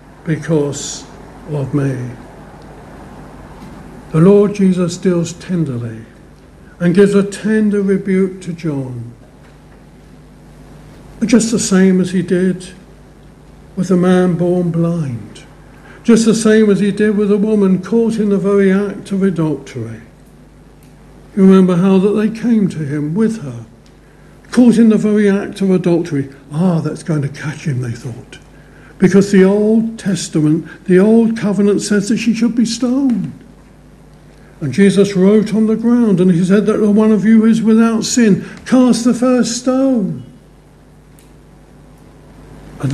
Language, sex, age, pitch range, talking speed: English, male, 60-79, 155-210 Hz, 140 wpm